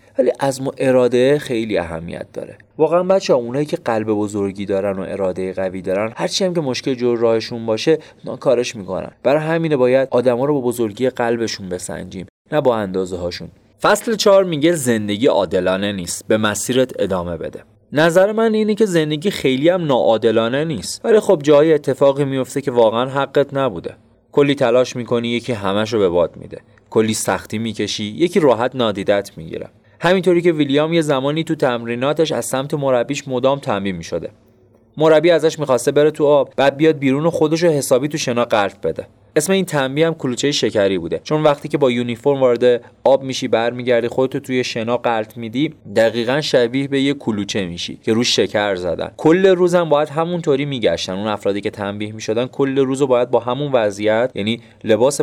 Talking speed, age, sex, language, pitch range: 175 wpm, 30-49, male, Persian, 110-150 Hz